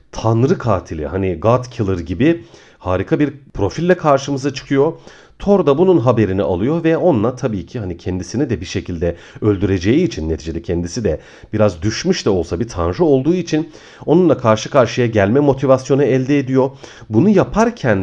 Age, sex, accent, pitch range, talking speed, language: 40-59, male, native, 100-150 Hz, 155 wpm, Turkish